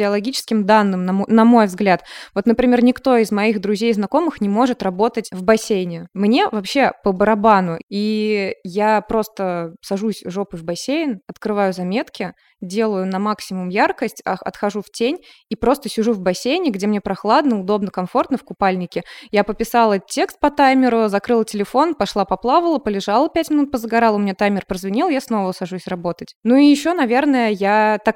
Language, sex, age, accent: Russian, female, 20-39, native